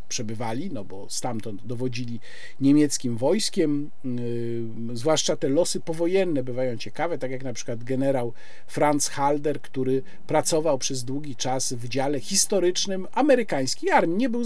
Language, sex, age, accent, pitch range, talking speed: Polish, male, 50-69, native, 130-175 Hz, 135 wpm